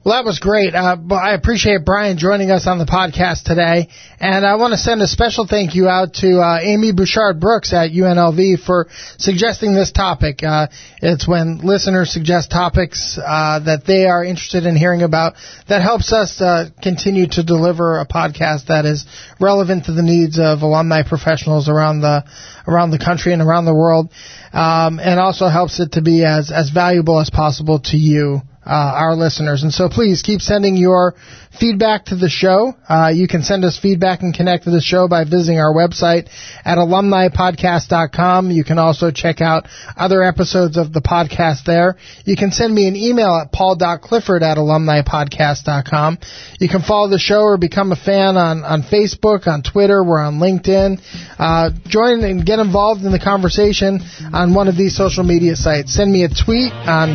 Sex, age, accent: male, 20-39, American